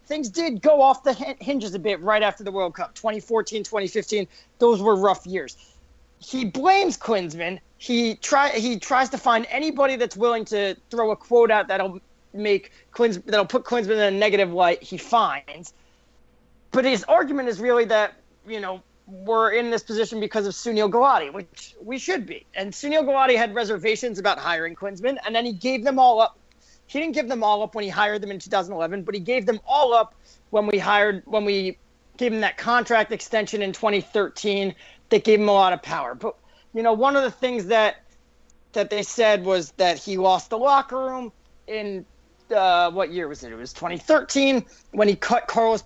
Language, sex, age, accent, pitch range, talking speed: English, male, 30-49, American, 200-245 Hz, 200 wpm